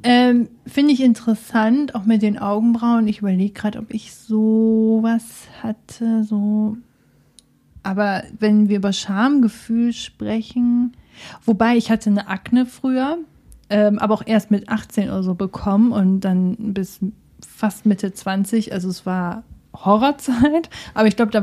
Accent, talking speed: German, 145 wpm